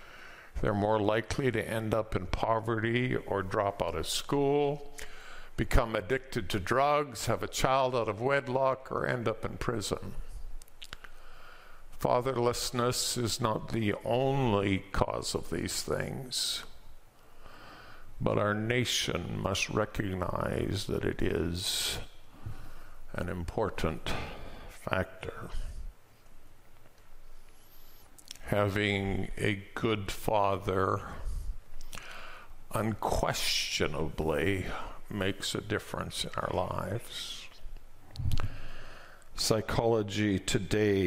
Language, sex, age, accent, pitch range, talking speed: English, male, 50-69, American, 100-125 Hz, 90 wpm